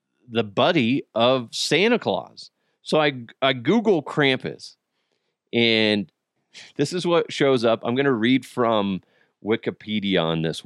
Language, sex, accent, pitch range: English, male, American, 120-160 Hz